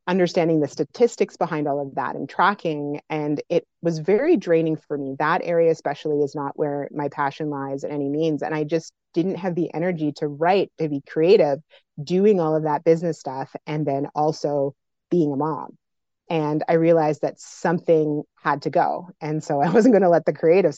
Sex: female